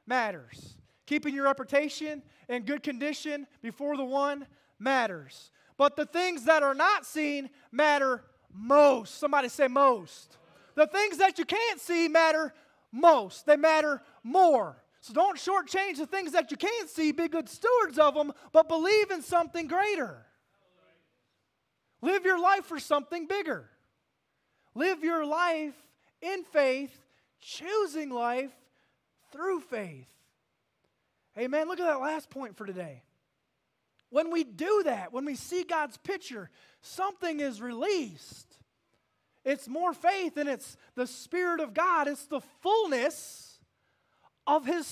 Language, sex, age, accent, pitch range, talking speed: English, male, 20-39, American, 270-350 Hz, 135 wpm